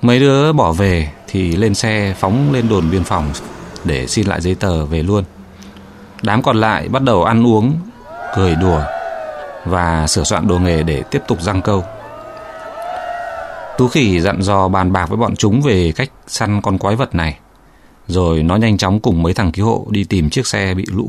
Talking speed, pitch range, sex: 195 wpm, 85-115 Hz, male